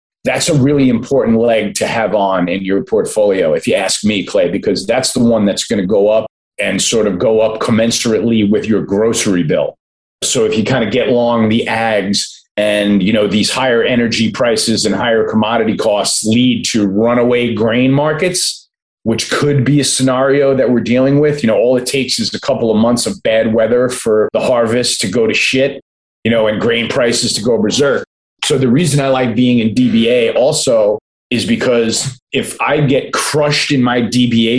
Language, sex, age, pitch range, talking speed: English, male, 30-49, 110-135 Hz, 200 wpm